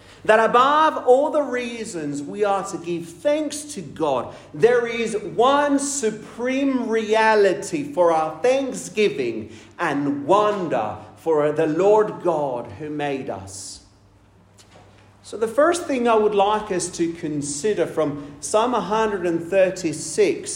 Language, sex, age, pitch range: English, male, 40-59, 145-220 Hz